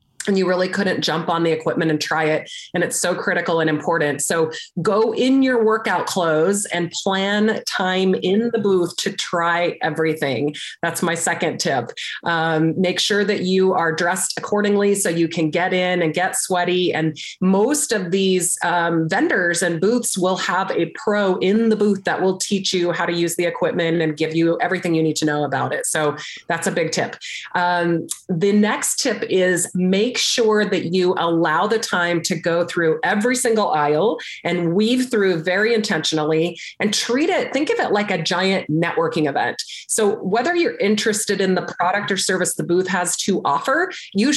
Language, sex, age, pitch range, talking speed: English, female, 30-49, 170-210 Hz, 190 wpm